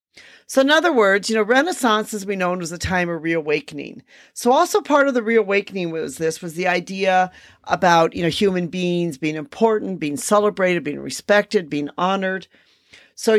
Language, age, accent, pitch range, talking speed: English, 40-59, American, 170-225 Hz, 180 wpm